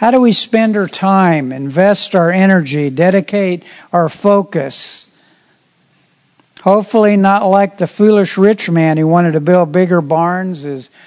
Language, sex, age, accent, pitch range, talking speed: English, male, 60-79, American, 160-195 Hz, 140 wpm